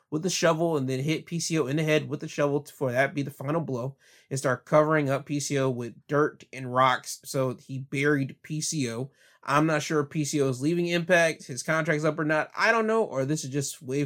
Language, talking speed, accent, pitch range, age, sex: English, 225 wpm, American, 135-160 Hz, 20-39, male